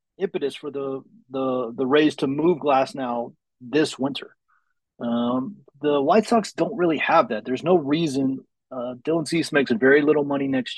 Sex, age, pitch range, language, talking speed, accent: male, 30-49, 125-150 Hz, English, 175 wpm, American